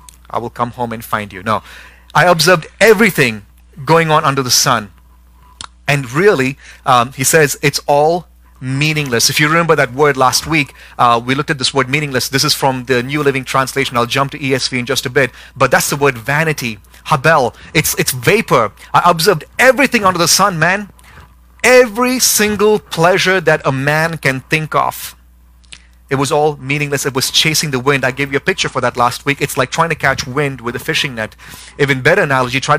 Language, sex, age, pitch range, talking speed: English, male, 30-49, 125-155 Hz, 200 wpm